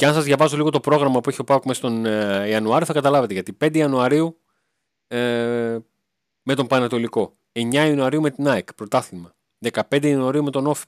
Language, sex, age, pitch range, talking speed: Greek, male, 30-49, 110-140 Hz, 180 wpm